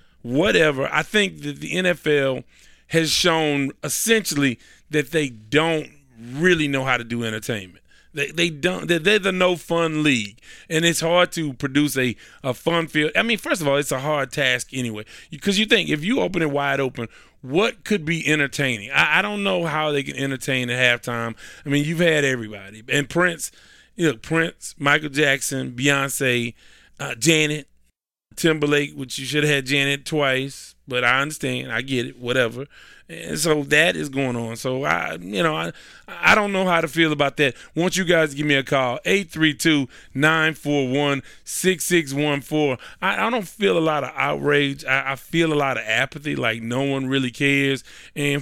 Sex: male